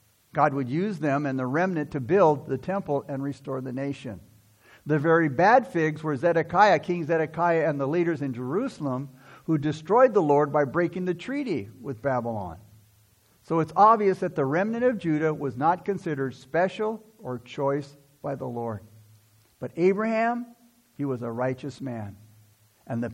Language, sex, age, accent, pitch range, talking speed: English, male, 60-79, American, 130-195 Hz, 165 wpm